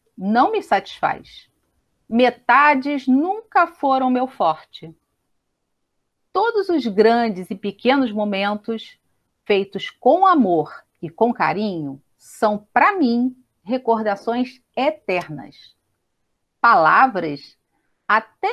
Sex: female